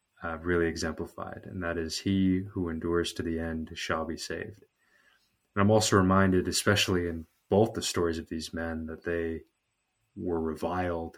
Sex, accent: male, American